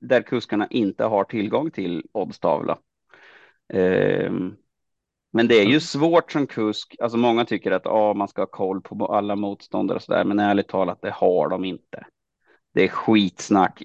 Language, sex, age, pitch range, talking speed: Swedish, male, 30-49, 100-115 Hz, 170 wpm